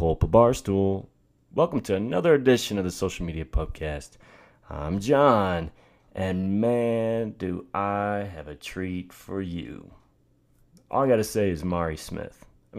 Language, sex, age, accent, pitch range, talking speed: English, male, 30-49, American, 85-115 Hz, 140 wpm